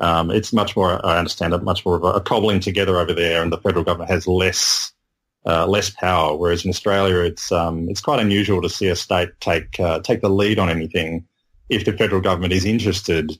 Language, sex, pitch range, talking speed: English, male, 90-105 Hz, 215 wpm